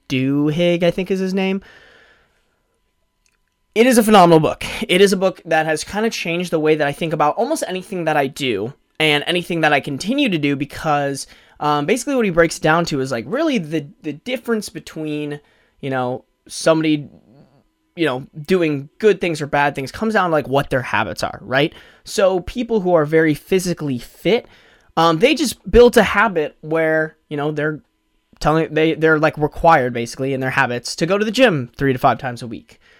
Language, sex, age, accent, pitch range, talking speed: English, male, 20-39, American, 145-185 Hz, 205 wpm